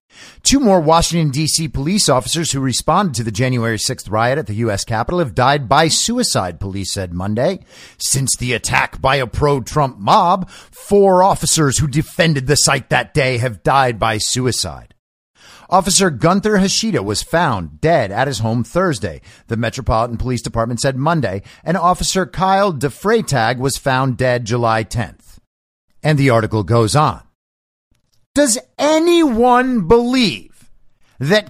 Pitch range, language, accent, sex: 125-195 Hz, English, American, male